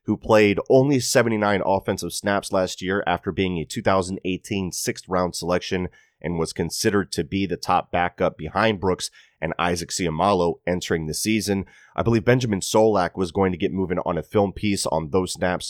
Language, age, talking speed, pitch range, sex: English, 30-49, 175 wpm, 85-110 Hz, male